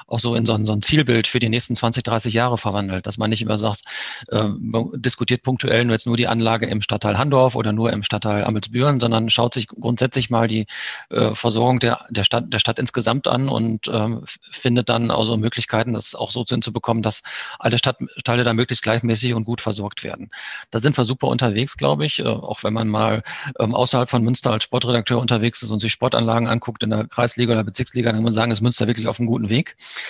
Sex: male